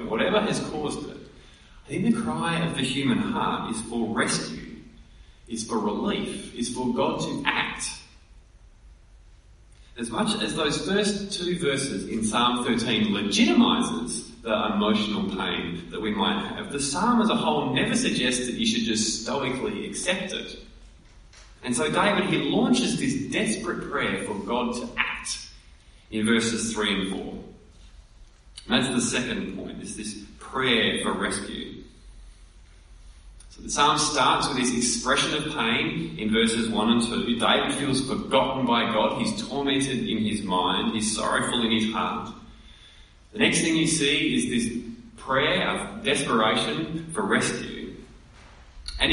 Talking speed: 150 wpm